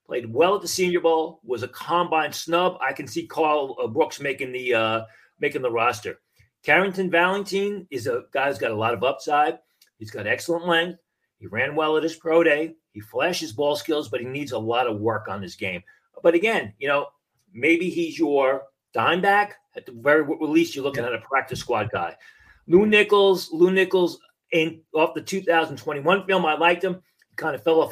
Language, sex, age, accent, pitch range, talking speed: English, male, 40-59, American, 135-180 Hz, 195 wpm